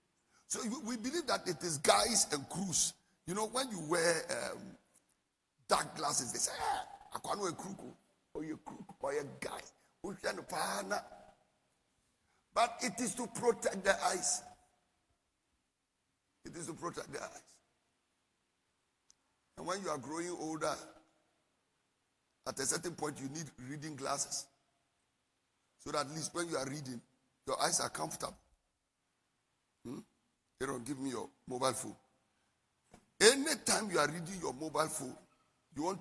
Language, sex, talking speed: English, male, 140 wpm